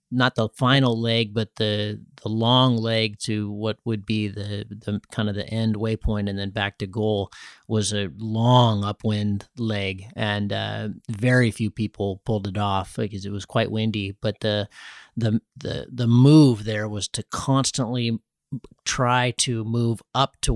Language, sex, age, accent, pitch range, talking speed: English, male, 30-49, American, 100-120 Hz, 170 wpm